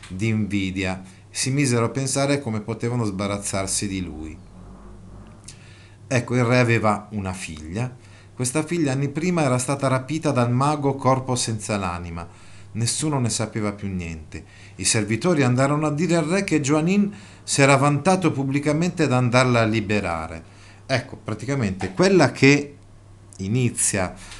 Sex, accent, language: male, native, Italian